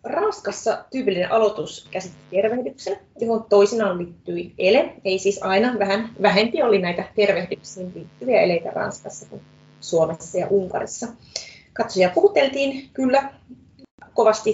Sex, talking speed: female, 115 wpm